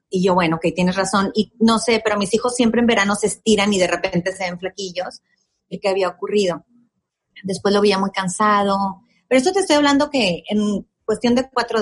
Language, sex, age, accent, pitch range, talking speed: Spanish, female, 30-49, Mexican, 190-240 Hz, 215 wpm